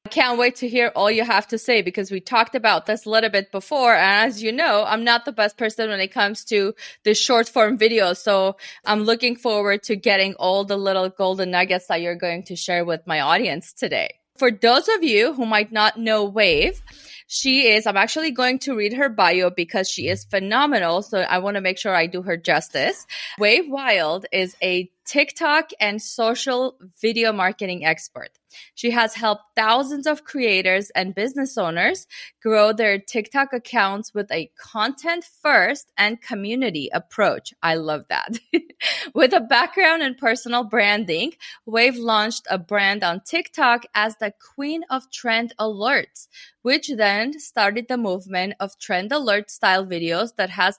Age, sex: 20-39, female